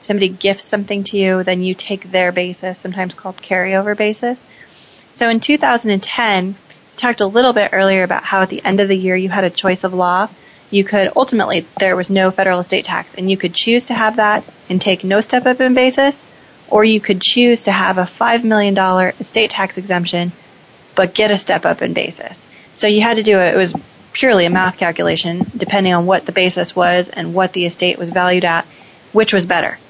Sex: female